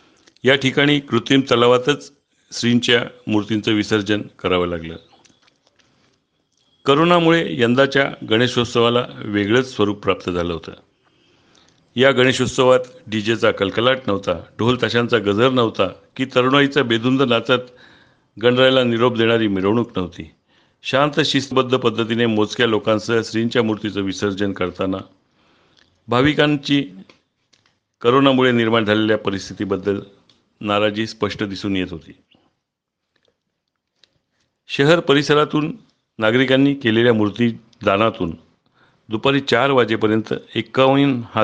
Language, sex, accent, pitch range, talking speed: Marathi, male, native, 100-130 Hz, 90 wpm